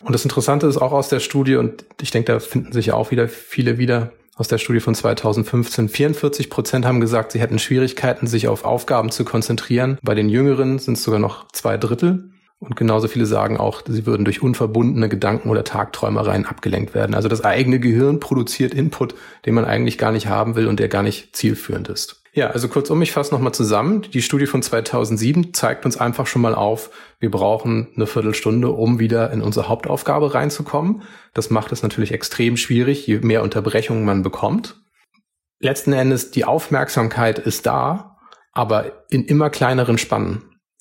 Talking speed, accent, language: 185 wpm, German, German